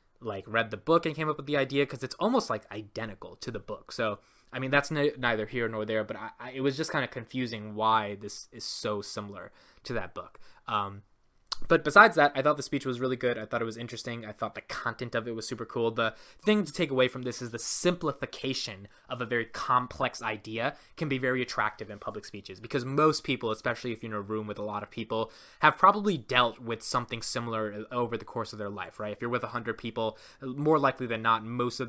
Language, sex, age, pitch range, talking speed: English, male, 20-39, 110-135 Hz, 235 wpm